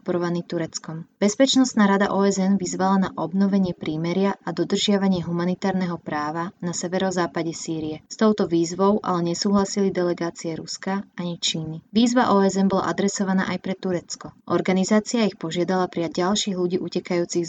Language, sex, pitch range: Slovak, female, 170-200 Hz